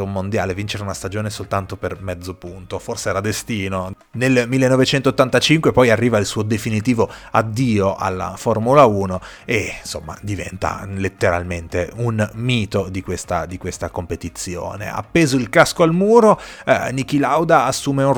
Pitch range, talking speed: 95-125 Hz, 145 wpm